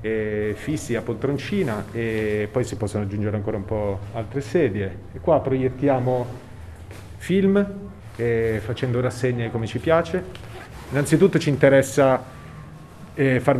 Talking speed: 125 wpm